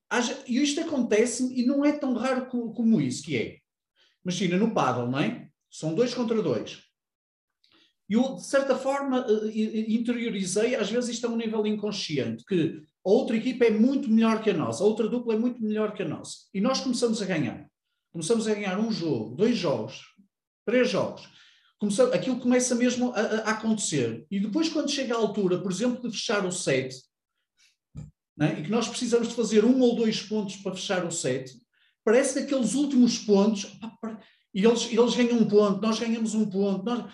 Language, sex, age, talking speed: Portuguese, male, 40-59, 190 wpm